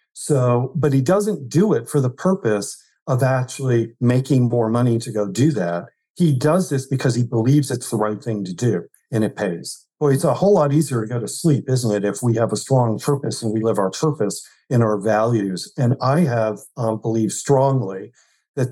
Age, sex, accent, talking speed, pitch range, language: 50-69, male, American, 210 wpm, 115-150 Hz, English